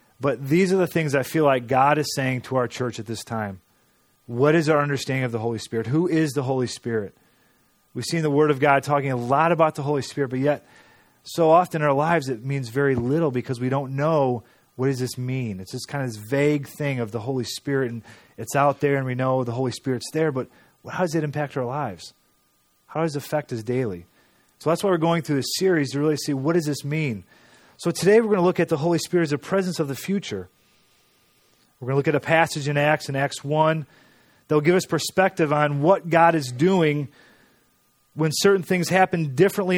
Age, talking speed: 30-49, 235 wpm